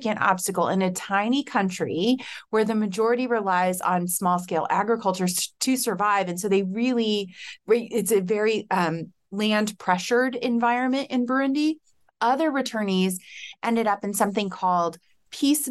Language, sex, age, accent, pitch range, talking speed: English, female, 30-49, American, 180-235 Hz, 130 wpm